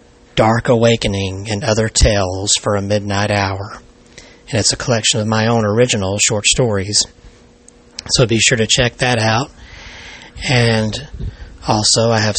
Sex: male